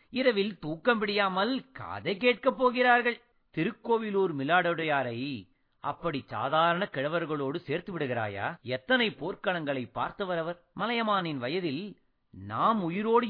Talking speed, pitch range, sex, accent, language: 90 wpm, 165-230 Hz, male, native, Tamil